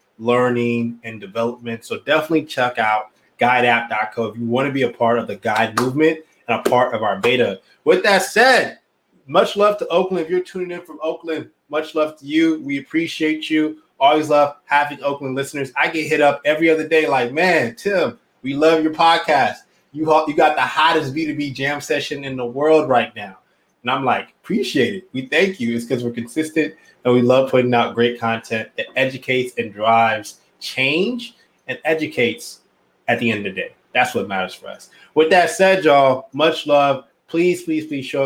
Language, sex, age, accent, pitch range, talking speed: English, male, 20-39, American, 120-160 Hz, 195 wpm